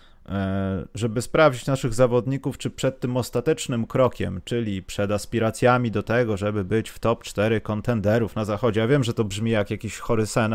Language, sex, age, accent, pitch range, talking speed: Polish, male, 30-49, native, 105-145 Hz, 175 wpm